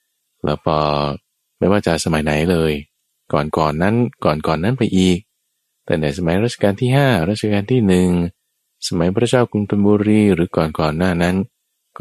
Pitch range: 75-100 Hz